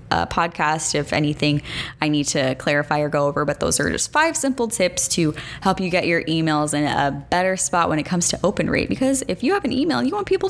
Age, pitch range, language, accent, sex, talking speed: 10-29, 150-225 Hz, English, American, female, 245 wpm